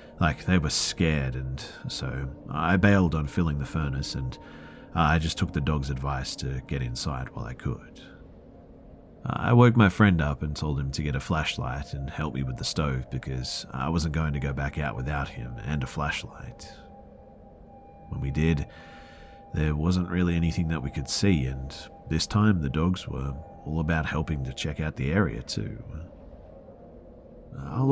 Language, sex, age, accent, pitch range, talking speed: English, male, 40-59, Australian, 70-85 Hz, 180 wpm